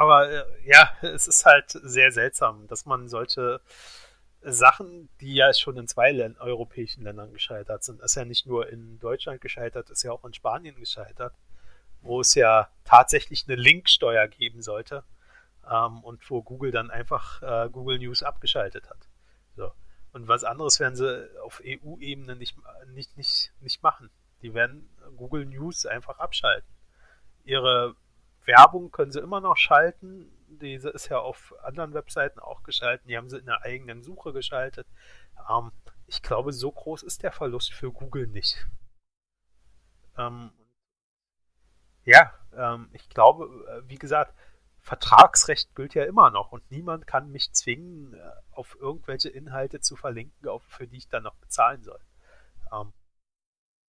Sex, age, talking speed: male, 30-49, 150 wpm